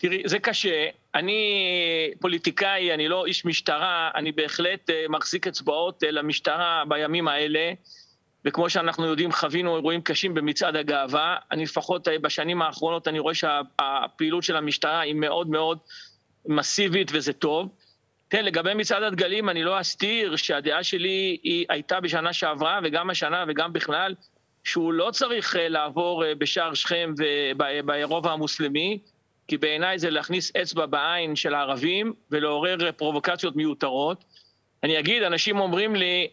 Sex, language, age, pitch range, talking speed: male, Hebrew, 40-59, 155-200 Hz, 135 wpm